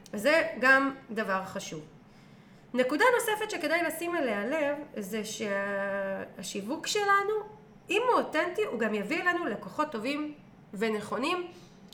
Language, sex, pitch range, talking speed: Hebrew, female, 205-280 Hz, 115 wpm